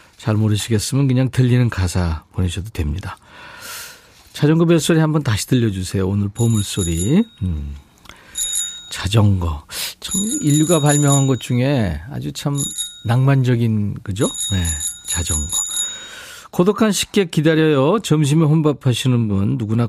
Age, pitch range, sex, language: 40-59, 105-155 Hz, male, Korean